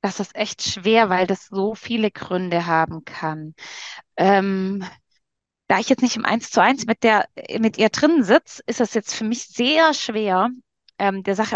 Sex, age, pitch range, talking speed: female, 20-39, 195-255 Hz, 185 wpm